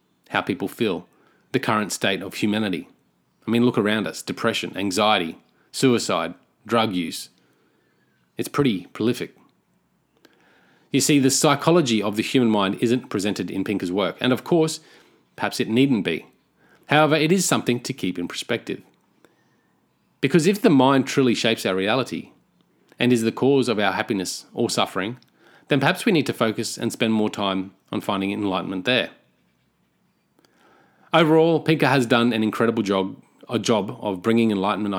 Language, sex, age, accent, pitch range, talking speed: English, male, 30-49, Australian, 105-140 Hz, 160 wpm